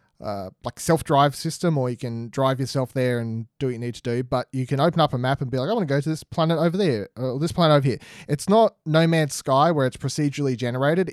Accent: Australian